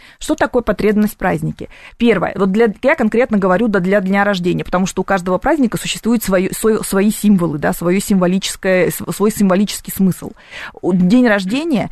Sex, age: female, 20-39